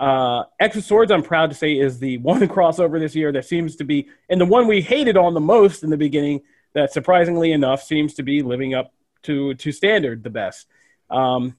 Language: English